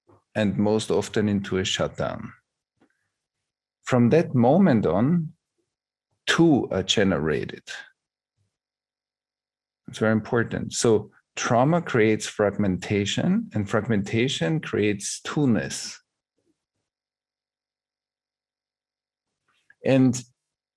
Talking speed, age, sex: 70 wpm, 50-69, male